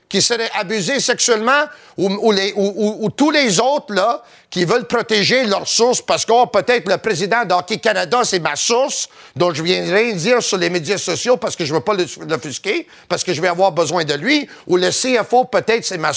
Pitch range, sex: 195-245 Hz, male